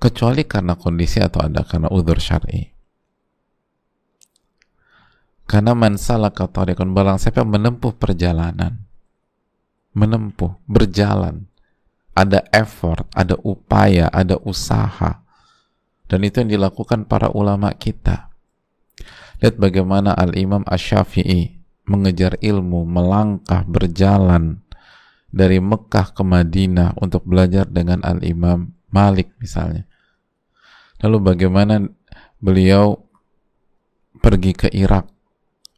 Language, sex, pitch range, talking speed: Indonesian, male, 90-105 Hz, 95 wpm